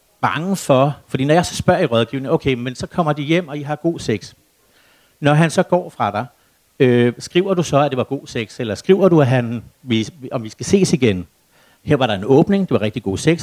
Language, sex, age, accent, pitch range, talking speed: Danish, male, 60-79, native, 115-155 Hz, 245 wpm